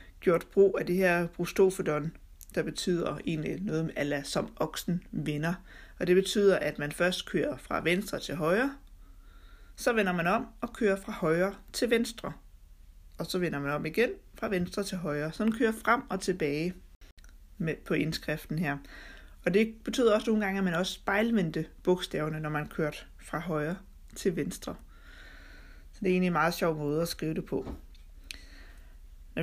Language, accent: Danish, native